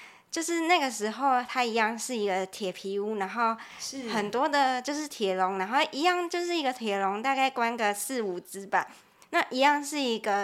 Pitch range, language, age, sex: 200-250 Hz, Chinese, 20-39, male